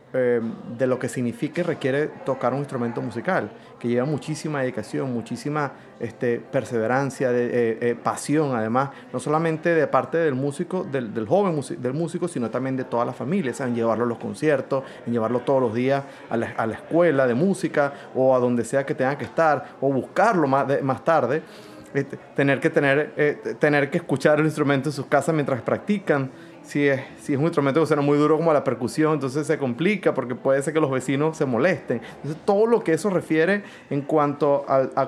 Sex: male